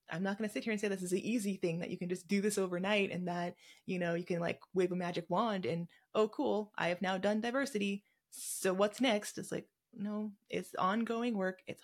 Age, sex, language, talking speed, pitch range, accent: 20-39, female, English, 250 wpm, 175-205 Hz, American